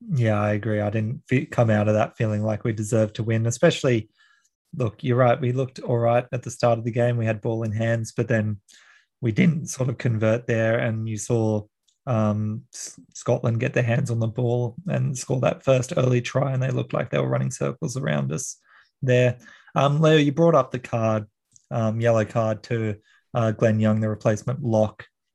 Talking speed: 205 wpm